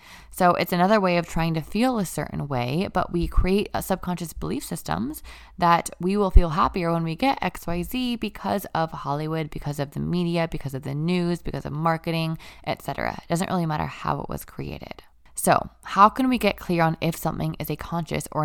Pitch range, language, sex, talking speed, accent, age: 145-190 Hz, English, female, 210 wpm, American, 20-39